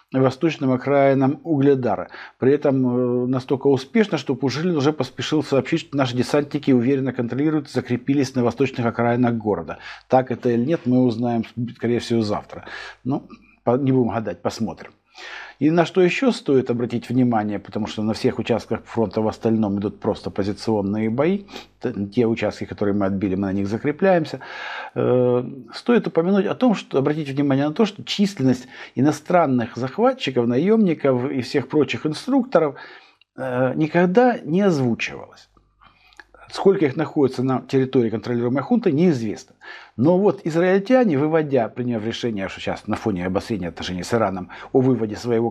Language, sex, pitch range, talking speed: Russian, male, 115-150 Hz, 150 wpm